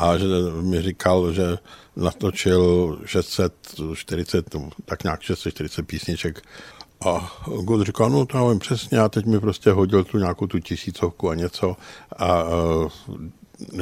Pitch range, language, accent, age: 90-110 Hz, Czech, native, 60-79